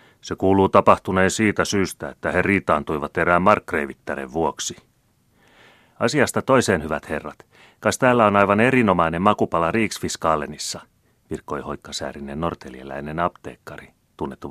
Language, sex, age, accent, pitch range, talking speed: Finnish, male, 30-49, native, 80-105 Hz, 115 wpm